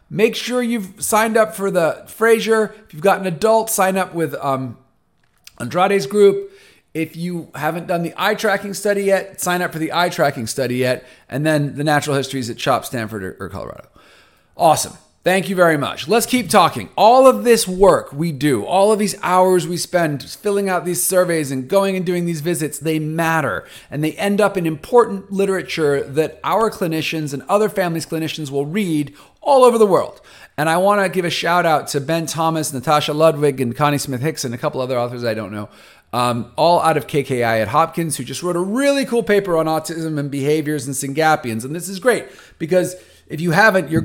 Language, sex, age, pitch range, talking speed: English, male, 40-59, 140-195 Hz, 205 wpm